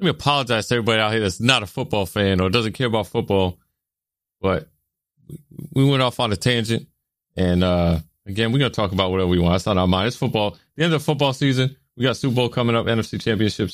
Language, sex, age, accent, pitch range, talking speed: English, male, 30-49, American, 90-120 Hz, 245 wpm